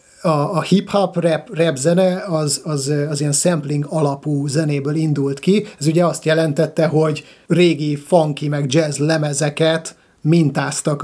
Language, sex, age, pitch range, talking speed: Hungarian, male, 30-49, 145-165 Hz, 135 wpm